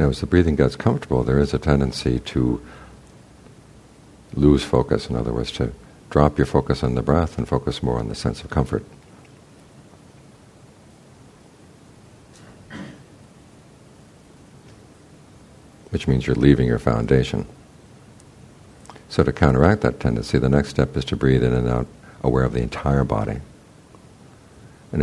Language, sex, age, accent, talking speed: English, male, 60-79, American, 135 wpm